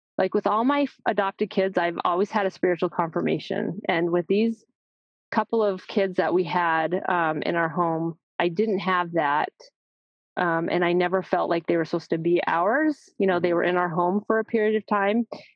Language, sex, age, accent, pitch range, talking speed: English, female, 30-49, American, 160-190 Hz, 205 wpm